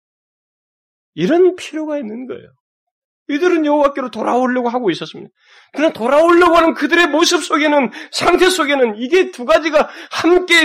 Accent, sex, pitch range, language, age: native, male, 235-330 Hz, Korean, 40-59